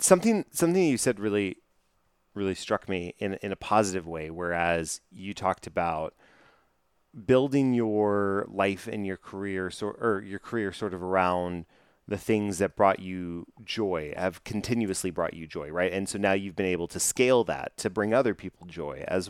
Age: 30-49